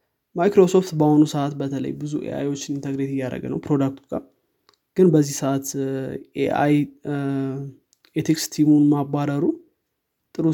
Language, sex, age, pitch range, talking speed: Amharic, male, 20-39, 135-160 Hz, 85 wpm